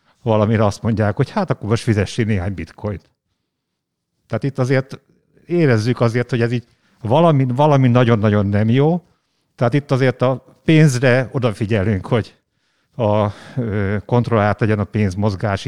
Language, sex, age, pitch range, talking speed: Hungarian, male, 50-69, 110-130 Hz, 135 wpm